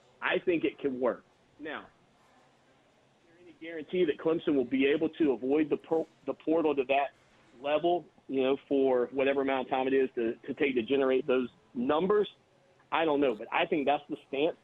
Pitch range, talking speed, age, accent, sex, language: 135-180 Hz, 200 wpm, 40-59, American, male, English